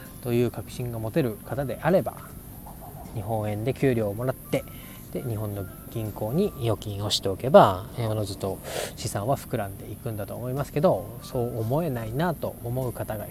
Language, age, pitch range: Japanese, 20-39, 100-125 Hz